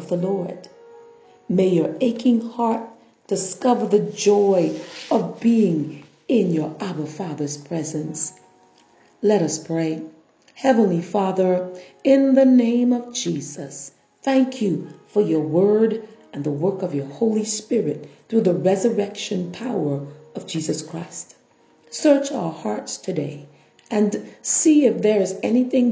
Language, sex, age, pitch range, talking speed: English, female, 40-59, 170-240 Hz, 125 wpm